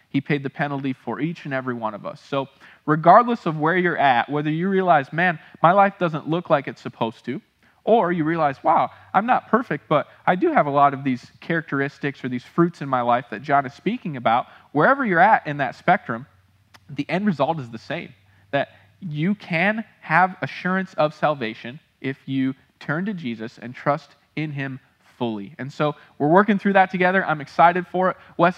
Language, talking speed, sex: English, 200 wpm, male